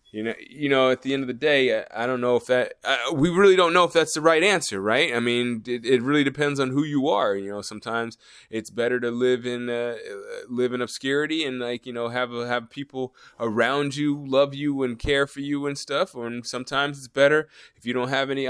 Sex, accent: male, American